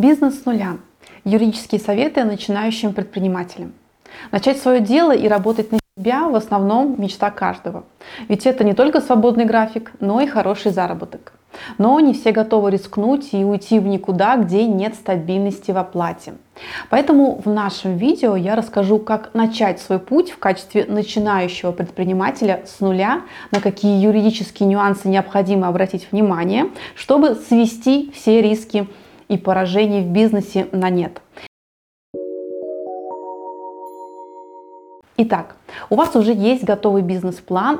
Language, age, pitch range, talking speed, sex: Russian, 20-39, 190-230 Hz, 130 wpm, female